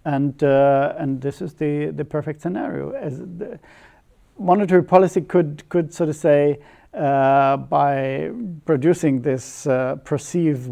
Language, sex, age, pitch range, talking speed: English, male, 50-69, 140-165 Hz, 135 wpm